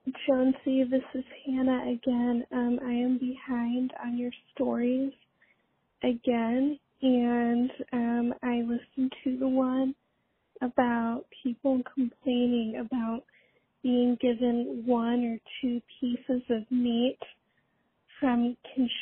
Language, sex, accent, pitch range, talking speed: English, female, American, 240-260 Hz, 105 wpm